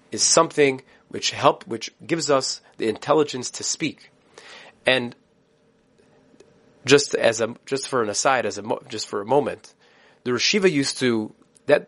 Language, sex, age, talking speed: English, male, 30-49, 155 wpm